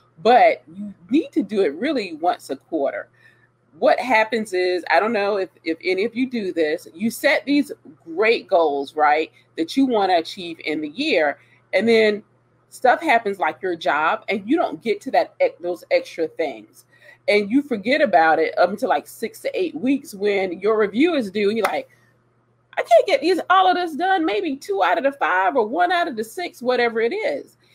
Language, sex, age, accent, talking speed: English, female, 30-49, American, 210 wpm